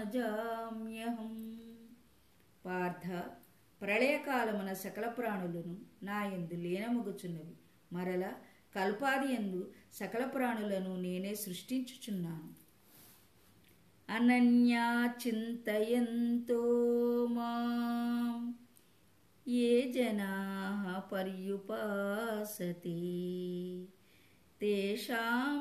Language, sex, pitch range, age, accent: Telugu, female, 195-235 Hz, 20-39, native